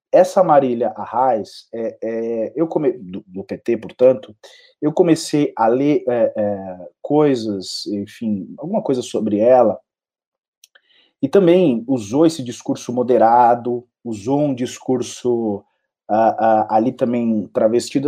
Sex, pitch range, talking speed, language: male, 115-165 Hz, 125 wpm, Portuguese